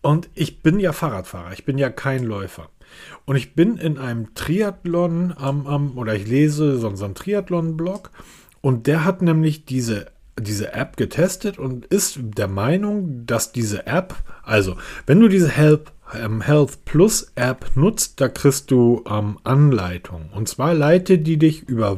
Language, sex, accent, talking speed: German, male, German, 170 wpm